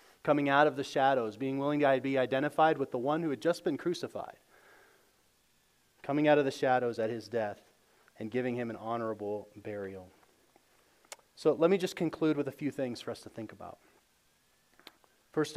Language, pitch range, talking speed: English, 130-175 Hz, 180 wpm